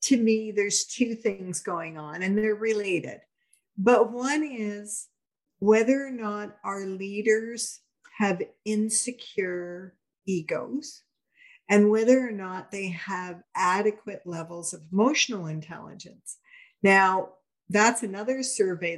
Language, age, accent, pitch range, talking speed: English, 50-69, American, 185-235 Hz, 115 wpm